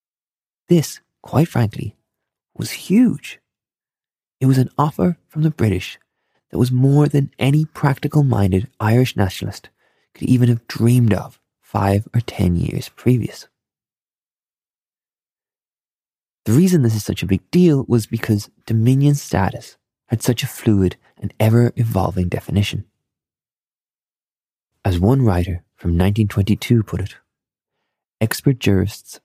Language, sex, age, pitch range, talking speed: English, male, 20-39, 95-130 Hz, 120 wpm